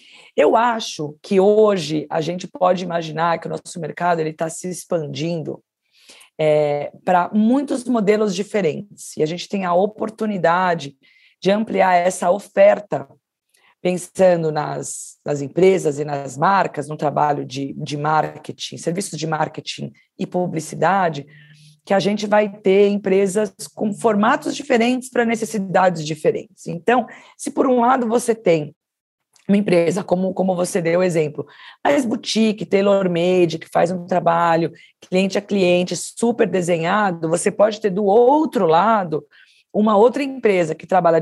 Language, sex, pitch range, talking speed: Portuguese, female, 170-220 Hz, 140 wpm